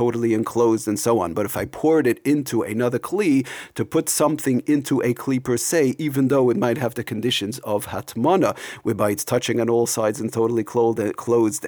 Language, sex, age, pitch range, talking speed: English, male, 40-59, 110-135 Hz, 200 wpm